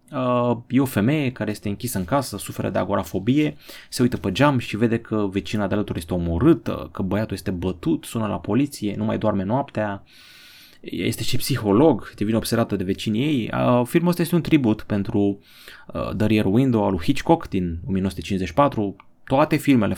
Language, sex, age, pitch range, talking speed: Romanian, male, 30-49, 100-135 Hz, 185 wpm